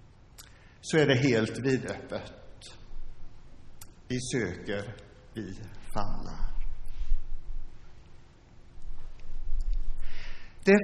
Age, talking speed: 60-79, 55 wpm